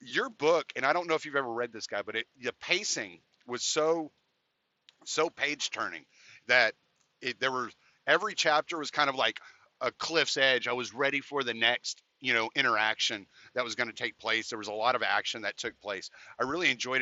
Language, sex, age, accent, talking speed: English, male, 40-59, American, 215 wpm